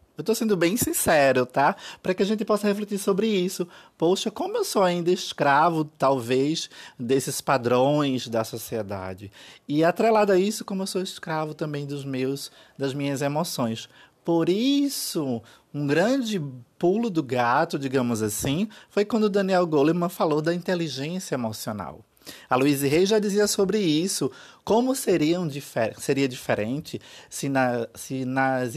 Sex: male